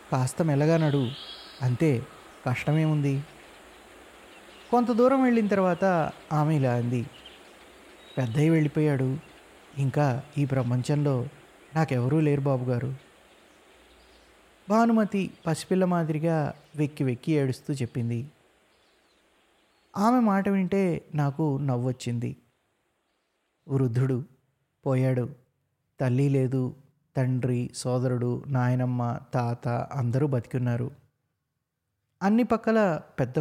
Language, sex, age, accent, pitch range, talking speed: Telugu, male, 20-39, native, 125-155 Hz, 80 wpm